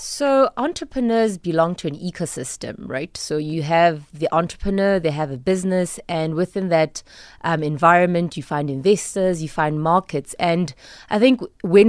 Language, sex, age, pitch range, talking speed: English, female, 20-39, 155-195 Hz, 155 wpm